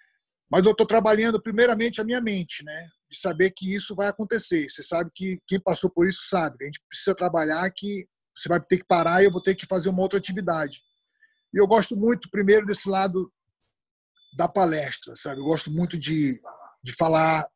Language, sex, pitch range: English, male, 170-210 Hz